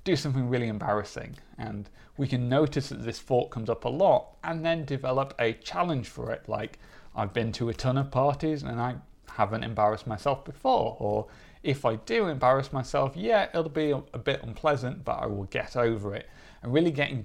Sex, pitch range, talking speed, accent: male, 105-140 Hz, 195 wpm, British